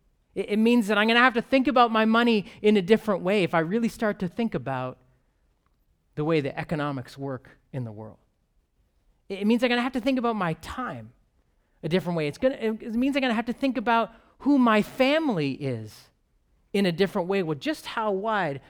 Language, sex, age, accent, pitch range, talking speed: English, male, 30-49, American, 140-210 Hz, 210 wpm